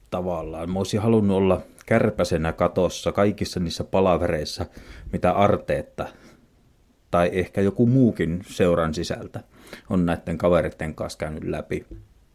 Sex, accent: male, native